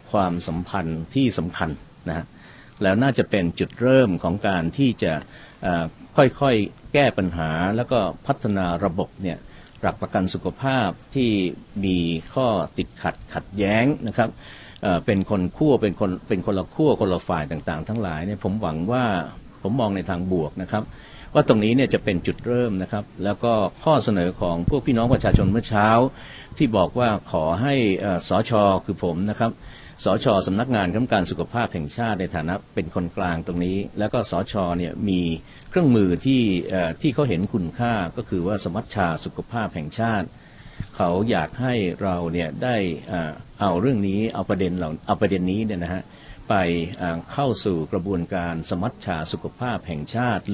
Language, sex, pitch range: Thai, male, 90-115 Hz